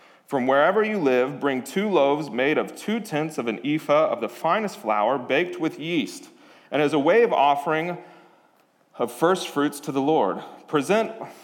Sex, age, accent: male, 30-49, American